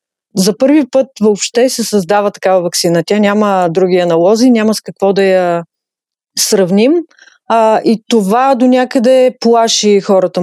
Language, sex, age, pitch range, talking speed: Bulgarian, female, 30-49, 185-240 Hz, 140 wpm